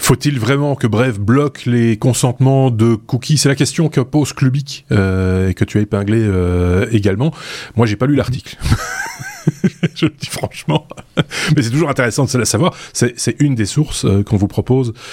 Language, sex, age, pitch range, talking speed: French, male, 30-49, 100-130 Hz, 190 wpm